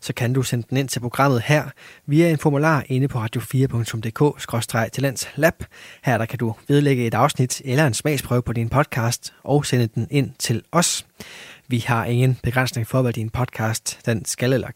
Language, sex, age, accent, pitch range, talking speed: Danish, male, 20-39, native, 115-145 Hz, 185 wpm